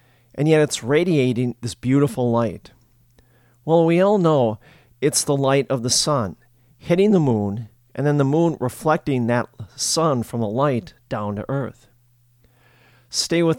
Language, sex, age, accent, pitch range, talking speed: English, male, 50-69, American, 120-150 Hz, 155 wpm